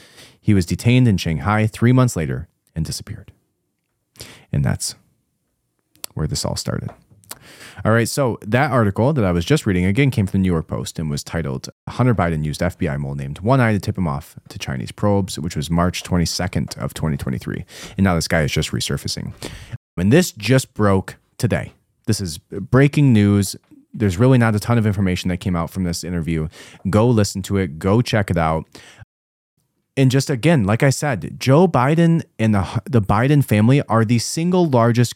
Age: 30-49